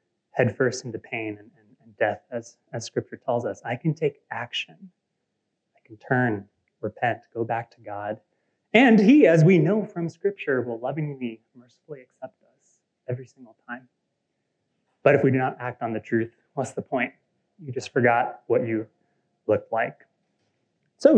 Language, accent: English, American